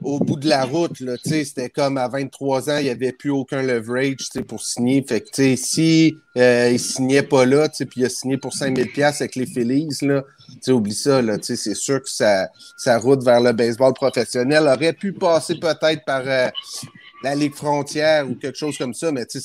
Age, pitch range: 30-49, 120-145 Hz